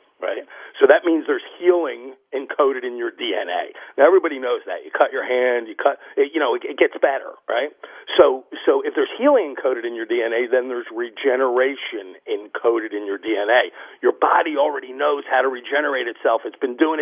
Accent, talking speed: American, 195 wpm